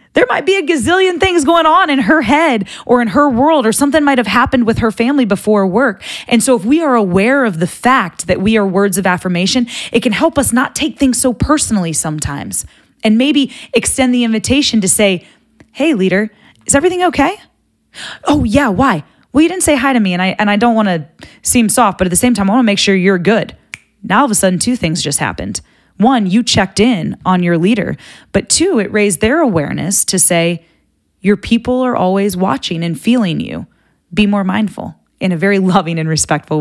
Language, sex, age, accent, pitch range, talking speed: English, female, 20-39, American, 180-250 Hz, 215 wpm